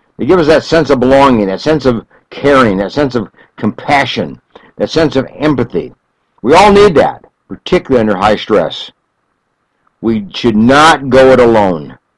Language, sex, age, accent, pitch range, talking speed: English, male, 60-79, American, 105-135 Hz, 165 wpm